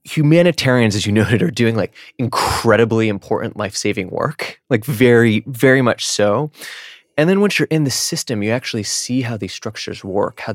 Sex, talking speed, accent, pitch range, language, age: male, 175 wpm, American, 110-135 Hz, English, 20-39